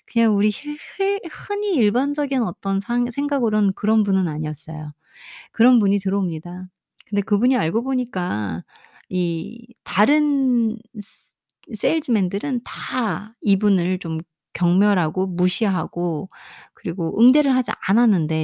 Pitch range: 175-245 Hz